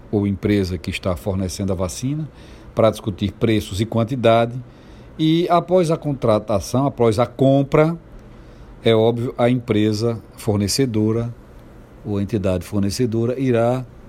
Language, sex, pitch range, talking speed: Portuguese, male, 110-140 Hz, 125 wpm